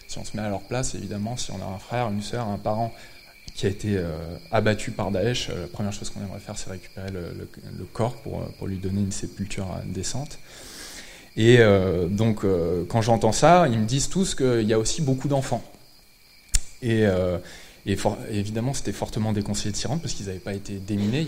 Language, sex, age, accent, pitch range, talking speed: French, male, 20-39, French, 100-115 Hz, 225 wpm